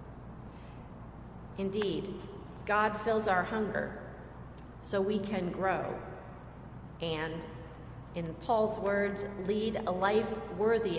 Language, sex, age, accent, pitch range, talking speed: English, female, 40-59, American, 185-230 Hz, 95 wpm